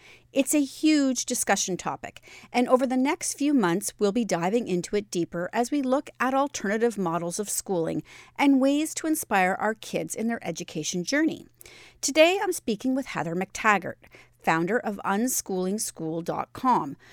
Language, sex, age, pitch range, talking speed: English, female, 40-59, 175-250 Hz, 155 wpm